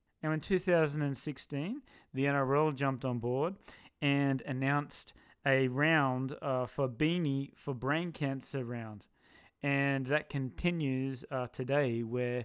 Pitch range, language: 130-155 Hz, English